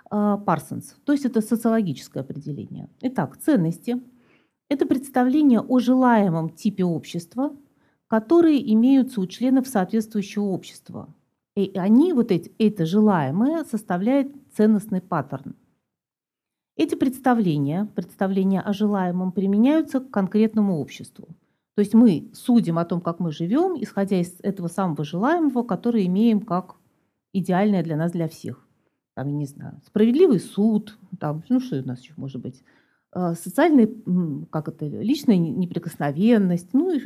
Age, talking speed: 40-59, 130 wpm